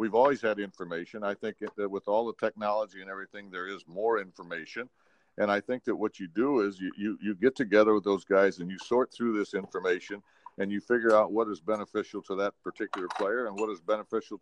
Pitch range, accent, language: 100-120 Hz, American, English